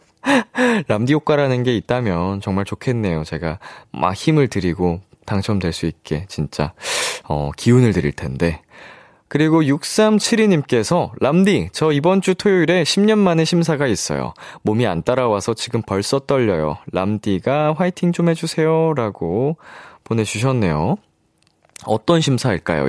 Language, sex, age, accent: Korean, male, 20-39, native